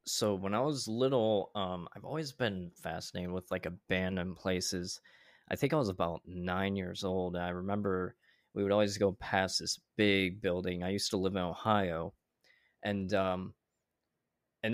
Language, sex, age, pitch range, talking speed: English, male, 20-39, 90-110 Hz, 165 wpm